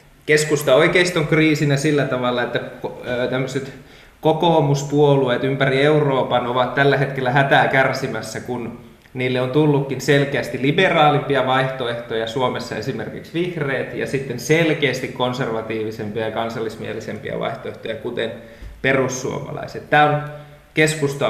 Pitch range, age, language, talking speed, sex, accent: 115-145 Hz, 20-39, Finnish, 100 wpm, male, native